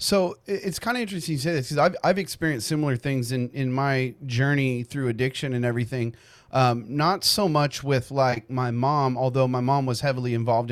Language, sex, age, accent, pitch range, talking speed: English, male, 30-49, American, 125-155 Hz, 200 wpm